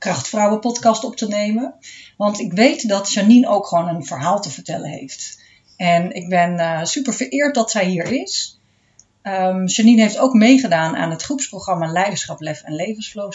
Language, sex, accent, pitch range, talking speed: Dutch, female, Dutch, 165-225 Hz, 170 wpm